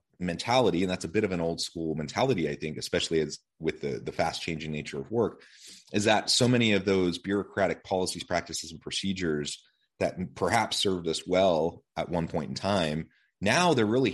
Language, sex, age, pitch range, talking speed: English, male, 30-49, 80-100 Hz, 195 wpm